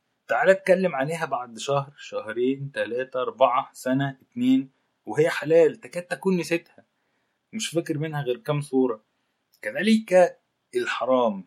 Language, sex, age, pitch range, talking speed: Arabic, male, 20-39, 125-180 Hz, 120 wpm